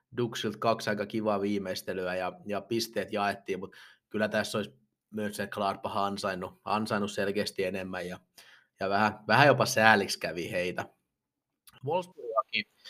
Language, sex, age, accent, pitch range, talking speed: Finnish, male, 30-49, native, 100-135 Hz, 130 wpm